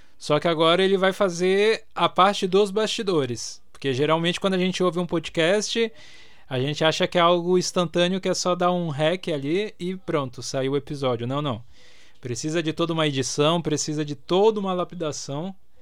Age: 20-39